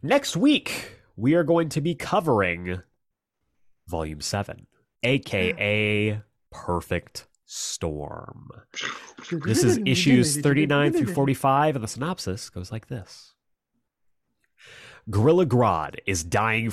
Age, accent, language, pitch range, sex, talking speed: 30-49, American, English, 95-130 Hz, male, 105 wpm